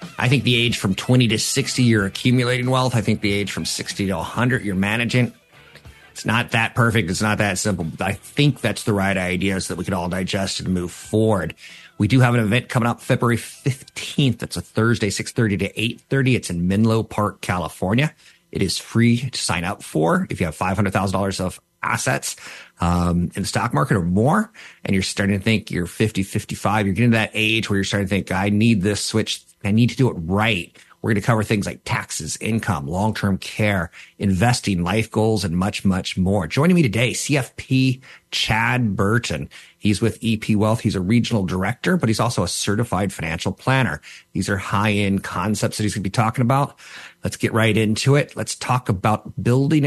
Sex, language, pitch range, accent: male, English, 100-120 Hz, American